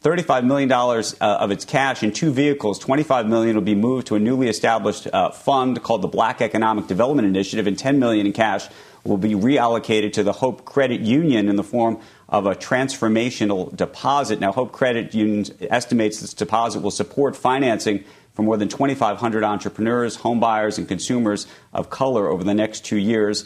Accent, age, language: American, 40-59, English